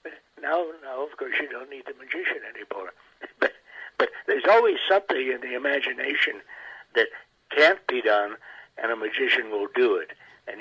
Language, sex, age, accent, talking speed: English, male, 60-79, American, 165 wpm